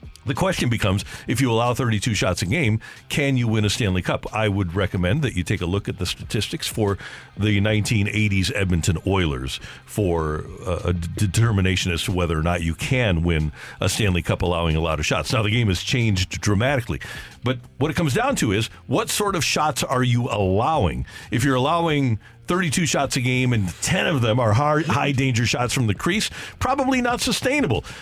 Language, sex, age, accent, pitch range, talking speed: English, male, 50-69, American, 95-135 Hz, 195 wpm